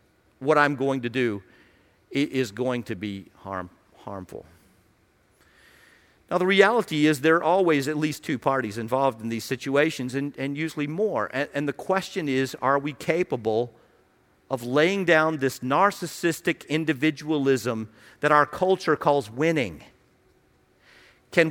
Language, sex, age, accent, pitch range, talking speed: English, male, 50-69, American, 115-160 Hz, 140 wpm